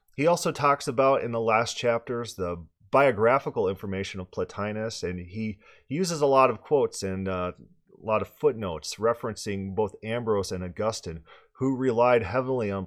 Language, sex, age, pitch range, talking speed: English, male, 30-49, 95-125 Hz, 160 wpm